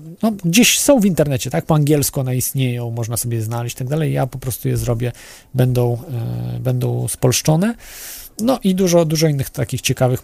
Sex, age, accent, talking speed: male, 40-59, native, 195 wpm